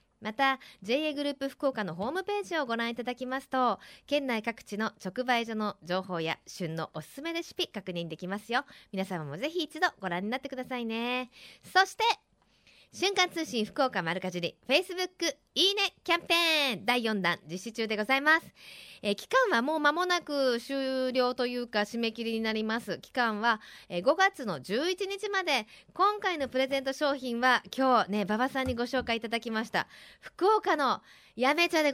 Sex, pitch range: female, 205-285 Hz